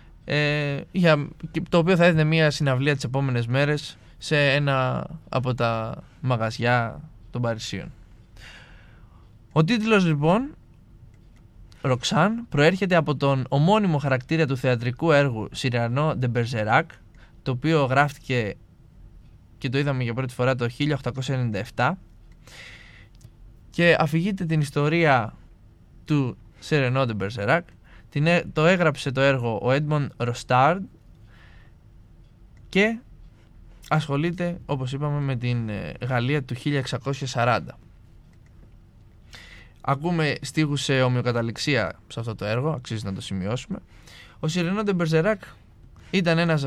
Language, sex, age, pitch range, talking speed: Greek, male, 20-39, 115-155 Hz, 105 wpm